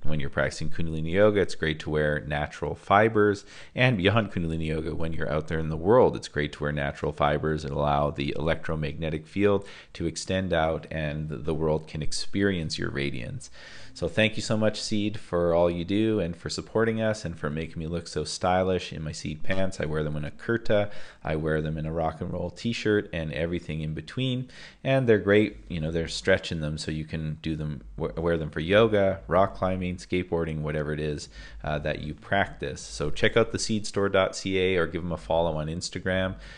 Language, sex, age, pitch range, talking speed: English, male, 30-49, 75-100 Hz, 205 wpm